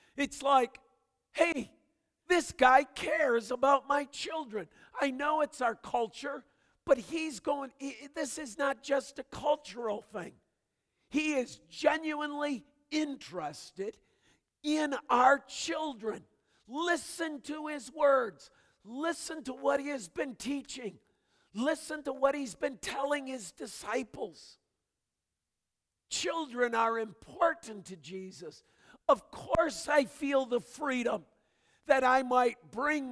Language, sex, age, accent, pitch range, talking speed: English, male, 50-69, American, 190-285 Hz, 120 wpm